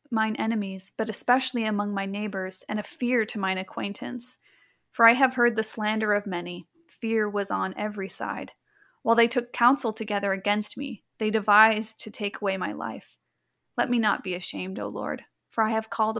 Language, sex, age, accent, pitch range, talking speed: English, female, 30-49, American, 205-235 Hz, 190 wpm